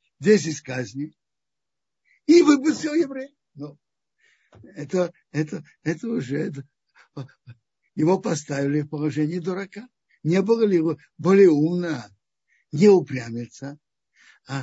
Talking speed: 100 wpm